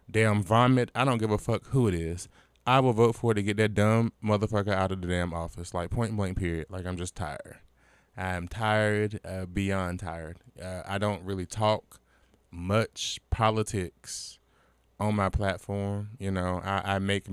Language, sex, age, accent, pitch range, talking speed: English, male, 20-39, American, 95-115 Hz, 185 wpm